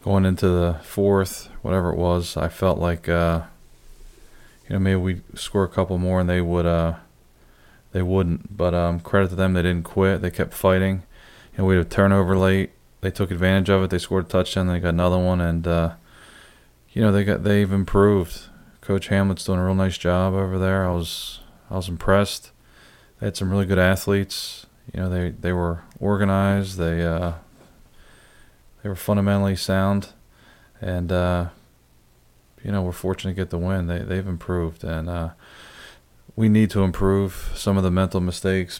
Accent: American